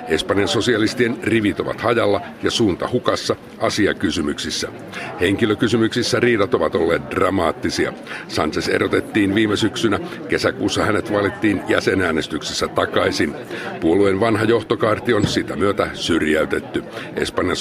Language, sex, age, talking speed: Finnish, male, 60-79, 105 wpm